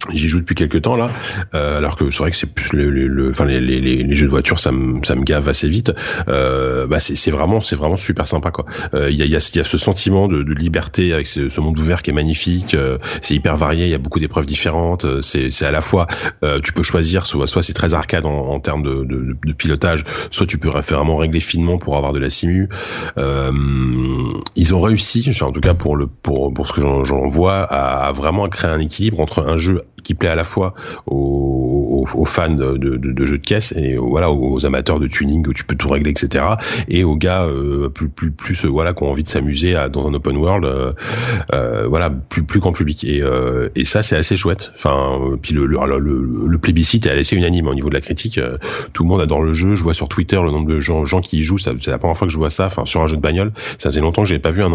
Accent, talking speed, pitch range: French, 270 wpm, 70-90 Hz